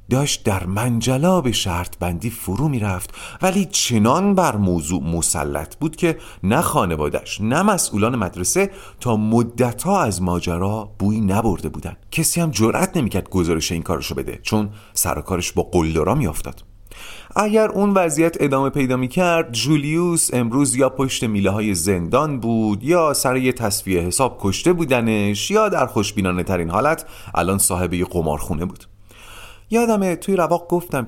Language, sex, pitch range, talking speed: Persian, male, 95-140 Hz, 145 wpm